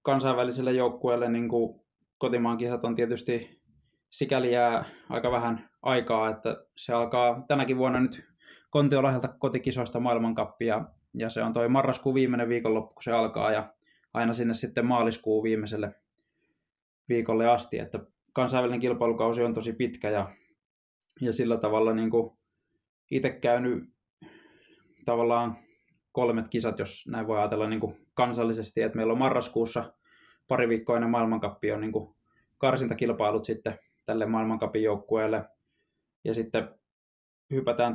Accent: native